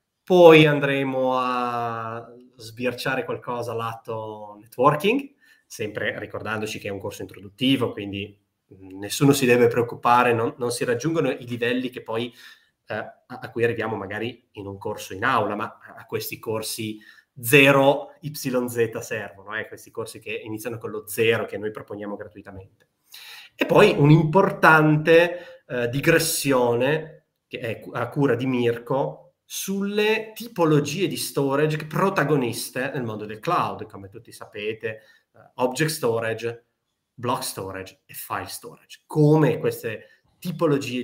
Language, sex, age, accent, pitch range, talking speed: Italian, male, 20-39, native, 110-155 Hz, 135 wpm